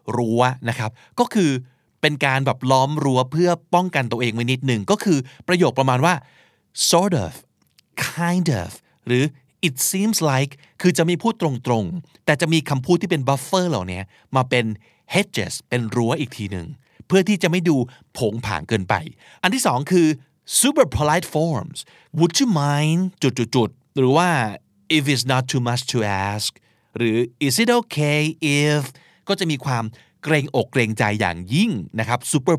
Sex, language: male, Thai